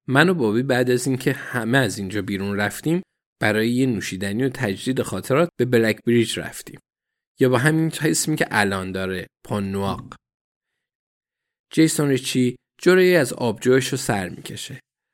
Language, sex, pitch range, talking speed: Persian, male, 105-140 Hz, 145 wpm